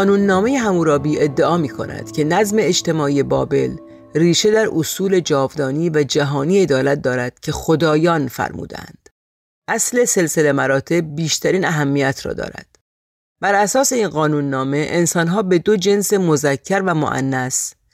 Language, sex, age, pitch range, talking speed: Persian, female, 40-59, 140-185 Hz, 130 wpm